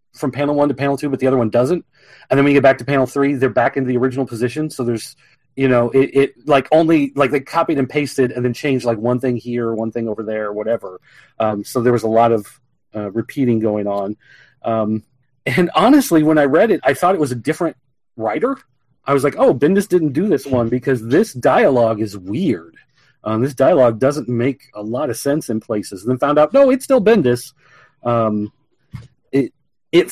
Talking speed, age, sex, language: 220 wpm, 30-49, male, English